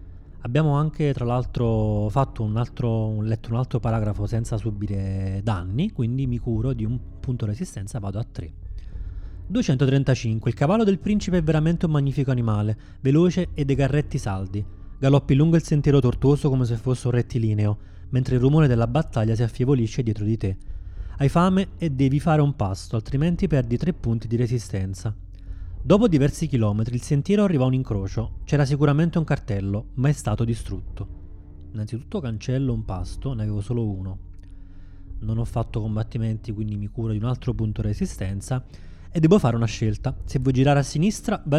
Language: Italian